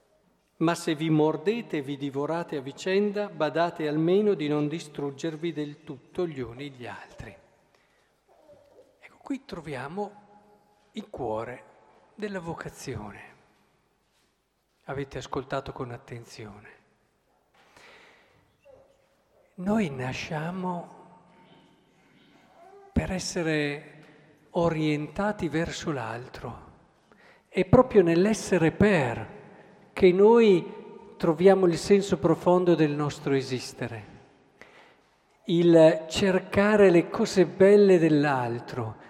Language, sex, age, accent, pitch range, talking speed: Italian, male, 50-69, native, 150-195 Hz, 85 wpm